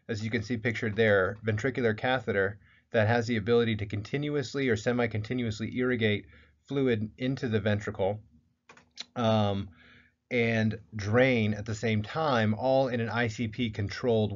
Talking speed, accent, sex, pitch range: 135 wpm, American, male, 105-120 Hz